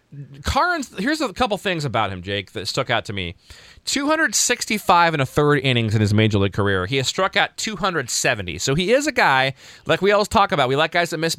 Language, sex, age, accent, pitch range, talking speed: English, male, 30-49, American, 110-145 Hz, 225 wpm